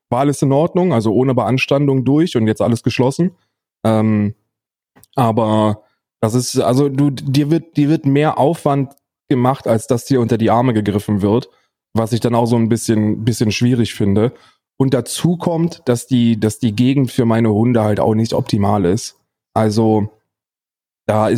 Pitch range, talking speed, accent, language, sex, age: 110-135 Hz, 165 wpm, German, German, male, 20-39